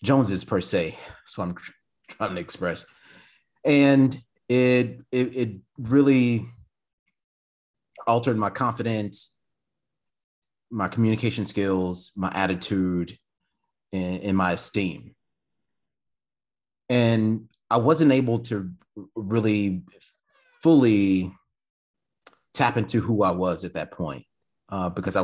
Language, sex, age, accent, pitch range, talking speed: English, male, 30-49, American, 85-110 Hz, 105 wpm